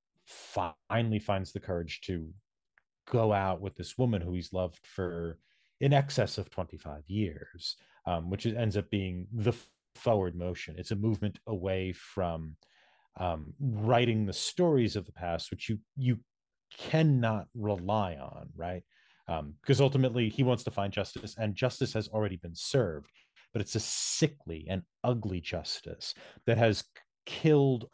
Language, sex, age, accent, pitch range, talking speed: English, male, 30-49, American, 90-120 Hz, 150 wpm